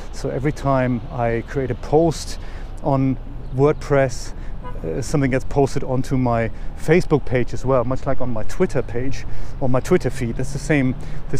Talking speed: 175 wpm